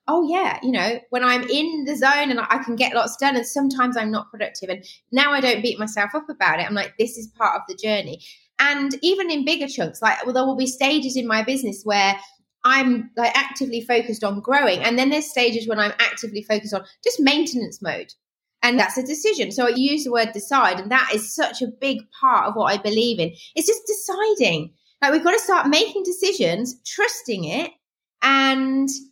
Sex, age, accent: female, 20-39, British